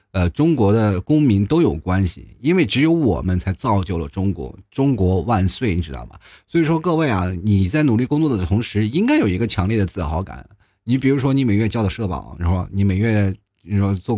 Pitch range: 95-115 Hz